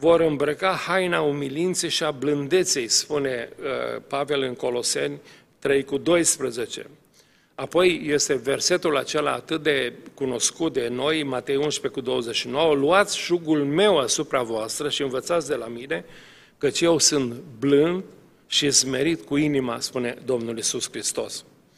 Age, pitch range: 40-59, 135-170 Hz